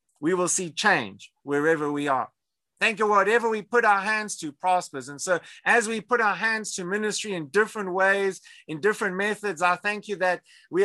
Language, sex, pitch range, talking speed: English, male, 150-195 Hz, 200 wpm